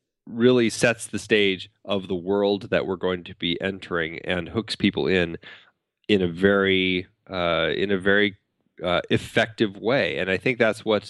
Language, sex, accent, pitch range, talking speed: English, male, American, 95-110 Hz, 175 wpm